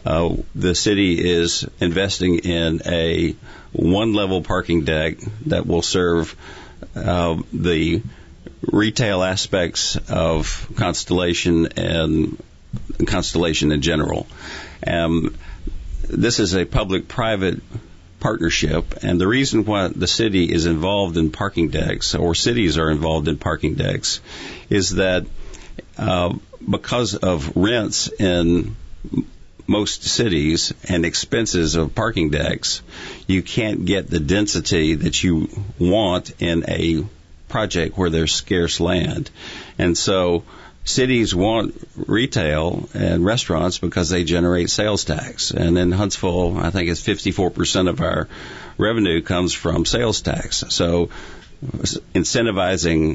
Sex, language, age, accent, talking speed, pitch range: male, English, 50-69, American, 120 wpm, 80-95 Hz